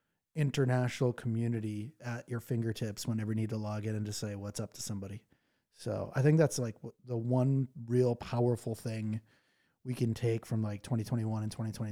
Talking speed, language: 170 wpm, English